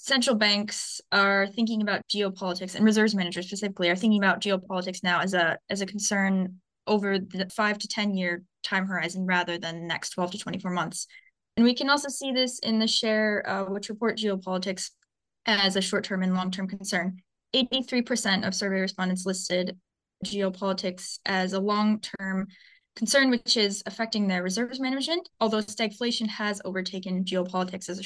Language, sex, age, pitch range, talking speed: English, female, 10-29, 190-225 Hz, 175 wpm